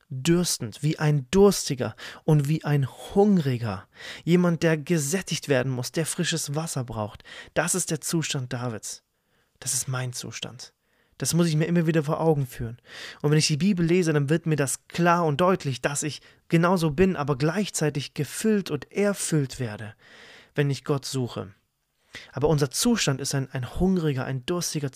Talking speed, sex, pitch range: 170 wpm, male, 130-160 Hz